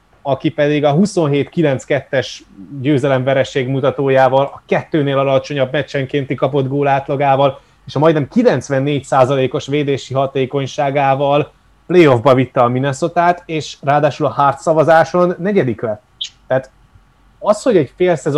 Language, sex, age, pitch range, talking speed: Hungarian, male, 20-39, 130-150 Hz, 120 wpm